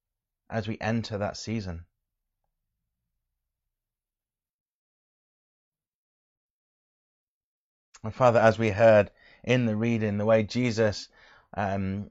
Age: 20-39